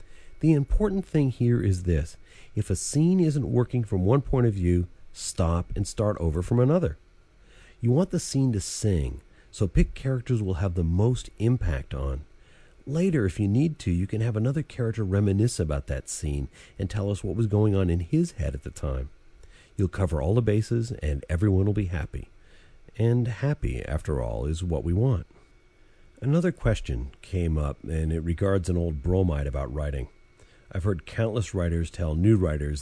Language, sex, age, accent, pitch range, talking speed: English, male, 40-59, American, 80-110 Hz, 185 wpm